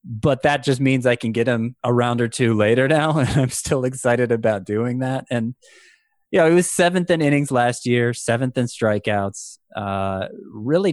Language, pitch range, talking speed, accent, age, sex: English, 105-130 Hz, 200 wpm, American, 20-39, male